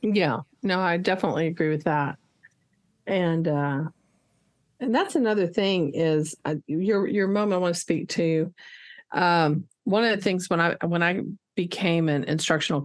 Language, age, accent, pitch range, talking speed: English, 50-69, American, 165-205 Hz, 165 wpm